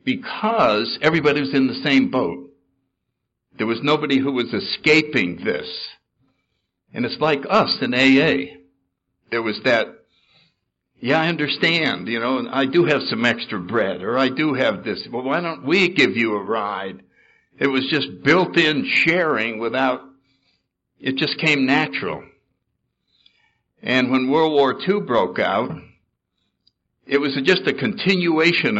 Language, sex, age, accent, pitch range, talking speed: English, male, 60-79, American, 120-160 Hz, 145 wpm